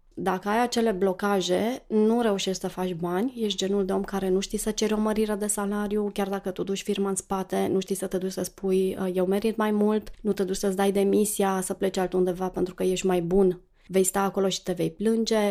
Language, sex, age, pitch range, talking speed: Romanian, female, 30-49, 185-210 Hz, 235 wpm